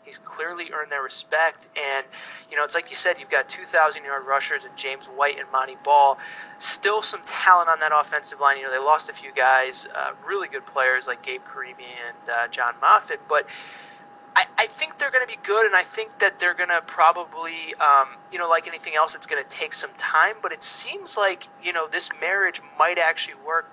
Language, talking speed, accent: English, 215 wpm, American